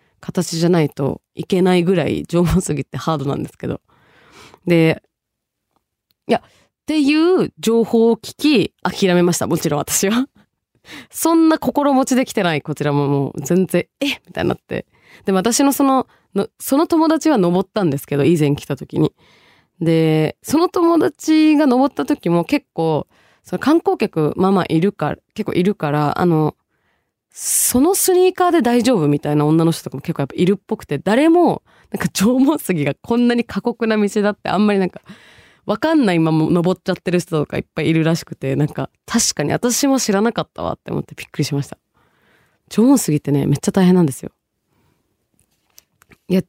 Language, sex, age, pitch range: Japanese, female, 20-39, 160-255 Hz